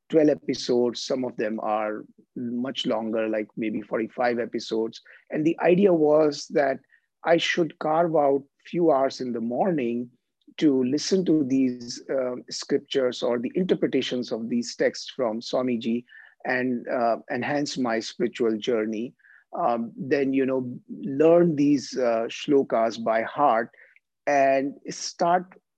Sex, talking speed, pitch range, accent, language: male, 135 wpm, 120-160 Hz, Indian, English